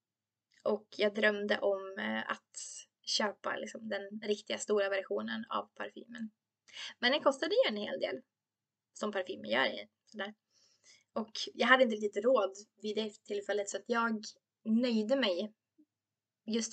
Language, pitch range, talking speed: Swedish, 205-270 Hz, 140 wpm